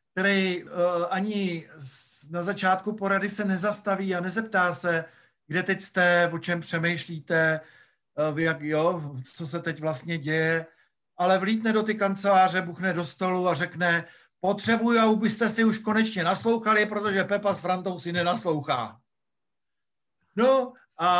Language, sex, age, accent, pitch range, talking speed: Czech, male, 50-69, native, 155-195 Hz, 140 wpm